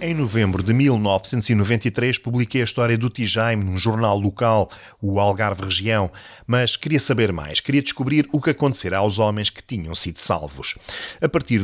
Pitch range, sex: 95-120 Hz, male